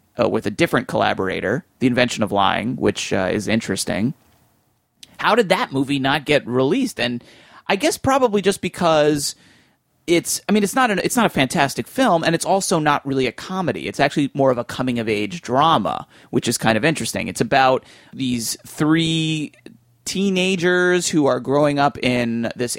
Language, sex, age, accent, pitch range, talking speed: English, male, 30-49, American, 120-155 Hz, 170 wpm